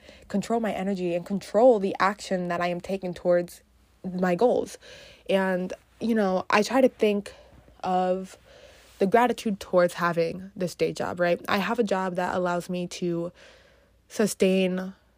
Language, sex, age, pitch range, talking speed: English, female, 20-39, 175-205 Hz, 155 wpm